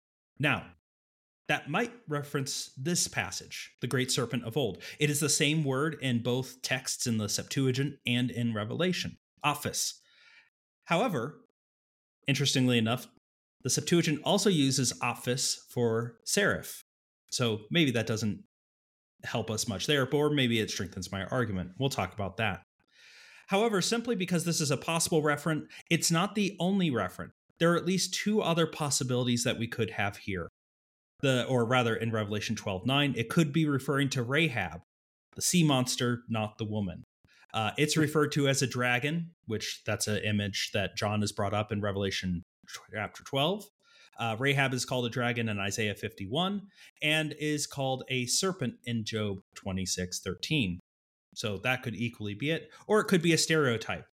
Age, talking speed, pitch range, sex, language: 30-49, 165 wpm, 105-150 Hz, male, English